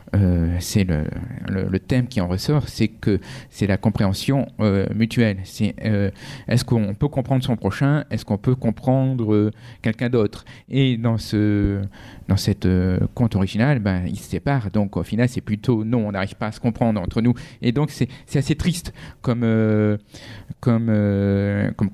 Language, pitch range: French, 105-125 Hz